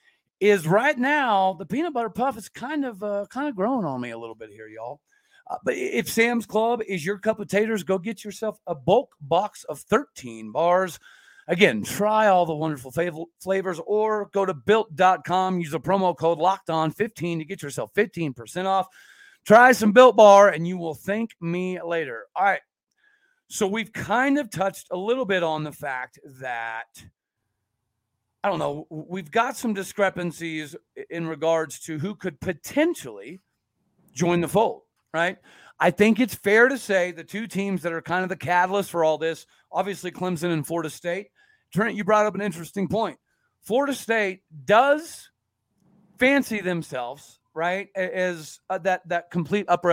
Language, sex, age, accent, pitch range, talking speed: English, male, 40-59, American, 165-220 Hz, 175 wpm